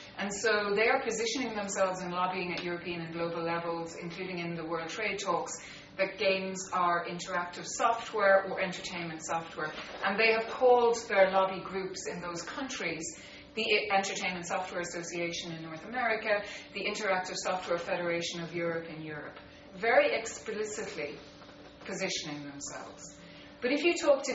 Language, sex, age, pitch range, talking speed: English, female, 30-49, 170-205 Hz, 150 wpm